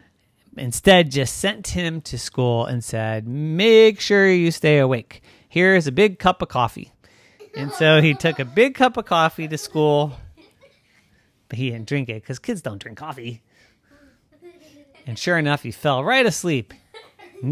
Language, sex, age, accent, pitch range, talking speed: English, male, 30-49, American, 115-195 Hz, 165 wpm